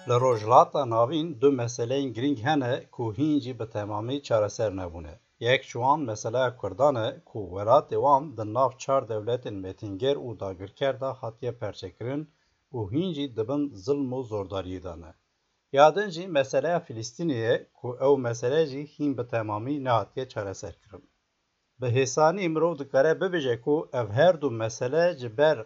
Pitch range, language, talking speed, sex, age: 110-150 Hz, Turkish, 135 wpm, male, 60-79